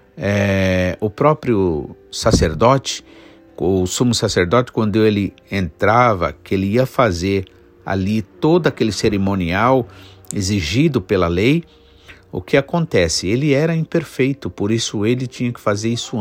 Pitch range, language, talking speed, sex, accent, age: 100-150 Hz, Portuguese, 120 wpm, male, Brazilian, 50-69